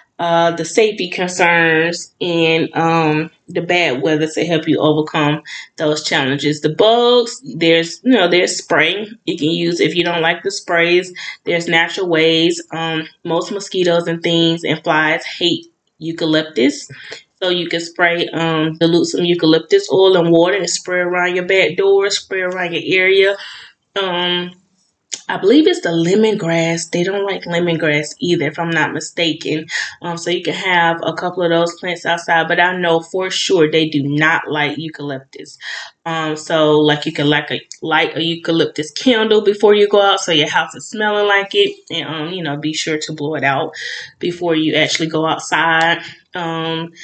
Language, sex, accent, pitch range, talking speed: English, female, American, 160-180 Hz, 175 wpm